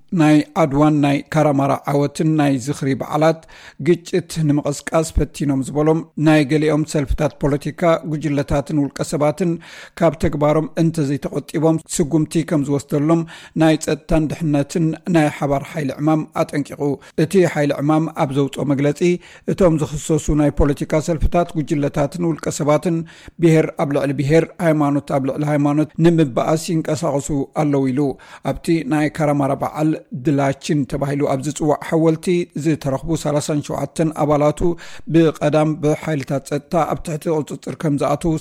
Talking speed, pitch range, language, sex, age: 115 wpm, 145-160 Hz, Amharic, male, 60-79